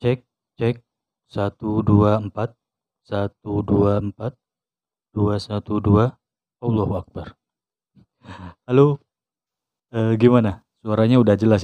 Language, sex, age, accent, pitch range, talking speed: Indonesian, male, 30-49, native, 95-115 Hz, 95 wpm